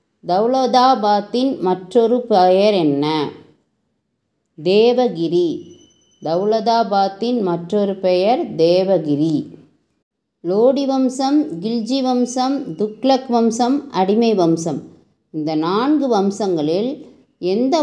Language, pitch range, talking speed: English, 180-255 Hz, 90 wpm